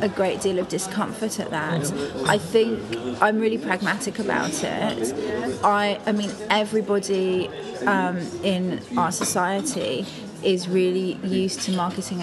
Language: English